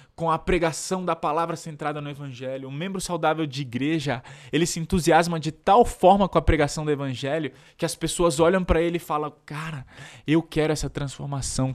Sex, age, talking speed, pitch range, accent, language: male, 20-39, 190 wpm, 120-155 Hz, Brazilian, Portuguese